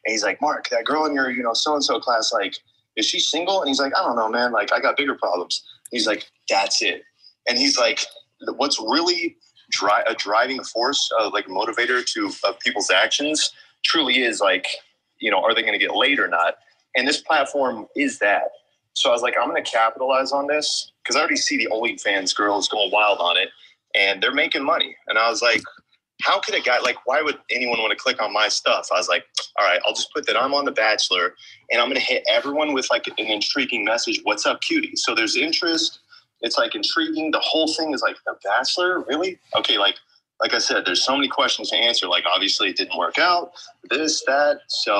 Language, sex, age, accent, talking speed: English, male, 30-49, American, 225 wpm